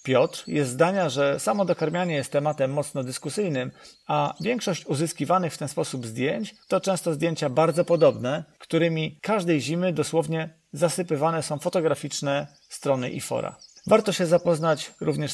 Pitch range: 145-180 Hz